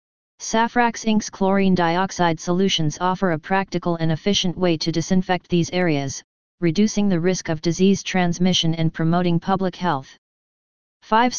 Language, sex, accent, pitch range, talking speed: English, female, American, 165-195 Hz, 135 wpm